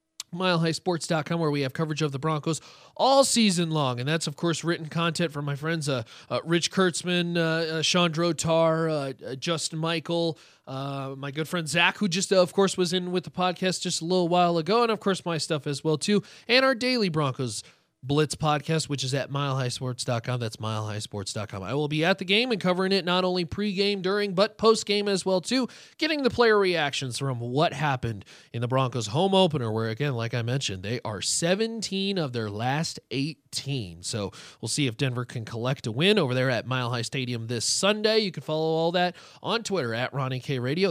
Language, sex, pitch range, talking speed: English, male, 135-190 Hz, 210 wpm